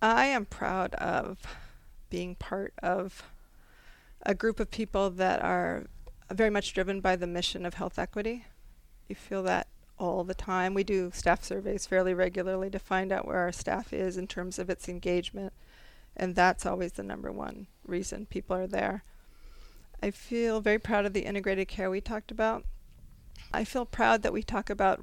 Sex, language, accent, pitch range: female, English, American, 185-205 Hz